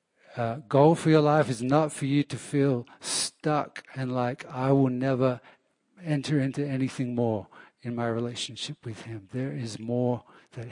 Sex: male